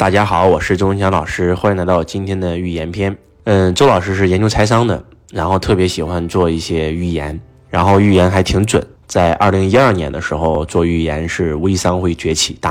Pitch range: 80-95 Hz